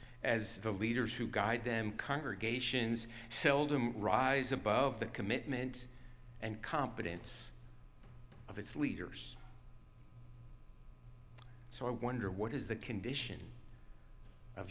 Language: English